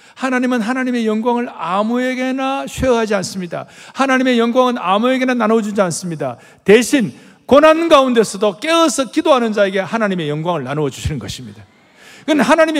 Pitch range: 200-280 Hz